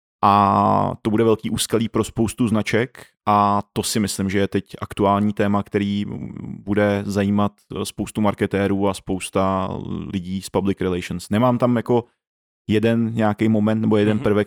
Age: 30-49